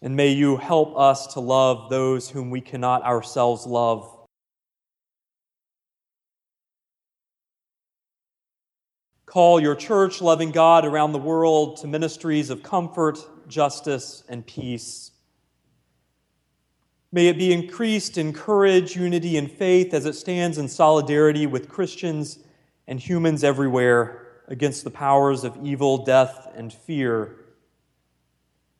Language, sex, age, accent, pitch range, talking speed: English, male, 30-49, American, 115-155 Hz, 115 wpm